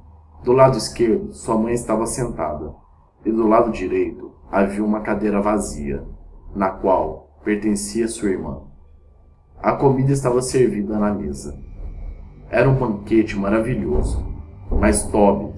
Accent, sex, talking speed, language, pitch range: Brazilian, male, 125 wpm, Portuguese, 80-115 Hz